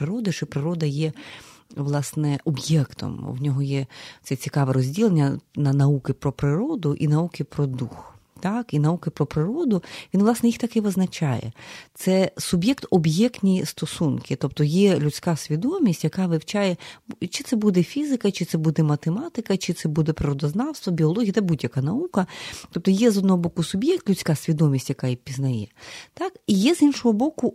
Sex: female